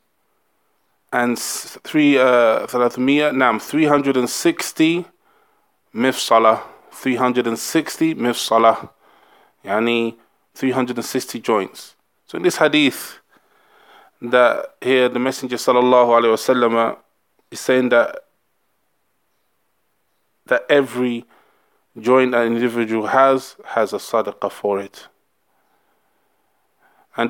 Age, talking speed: 20-39, 100 wpm